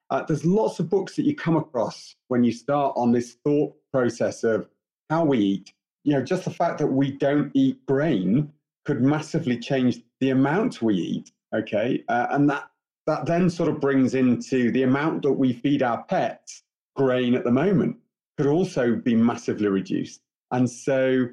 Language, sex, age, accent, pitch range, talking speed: English, male, 40-59, British, 115-150 Hz, 185 wpm